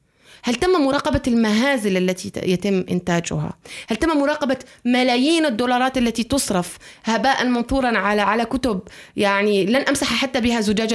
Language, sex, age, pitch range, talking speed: Arabic, female, 30-49, 190-260 Hz, 135 wpm